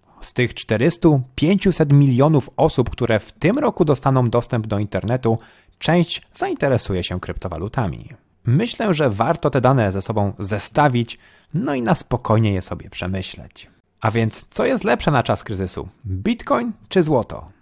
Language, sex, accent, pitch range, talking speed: Polish, male, native, 100-155 Hz, 145 wpm